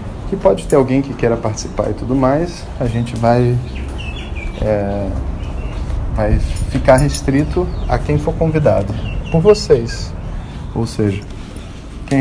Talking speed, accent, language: 130 wpm, Brazilian, Portuguese